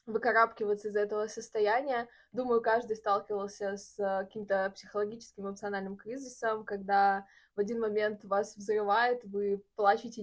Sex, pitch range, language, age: female, 195-230 Hz, Russian, 20-39